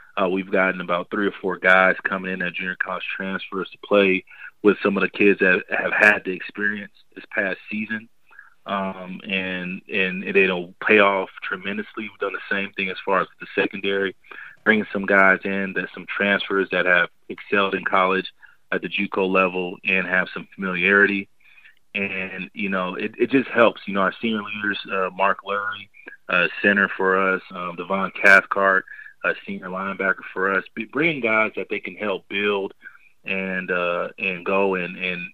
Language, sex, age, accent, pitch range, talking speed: English, male, 30-49, American, 95-105 Hz, 185 wpm